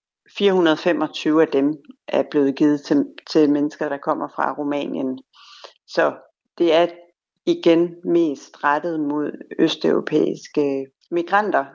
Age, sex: 60-79, female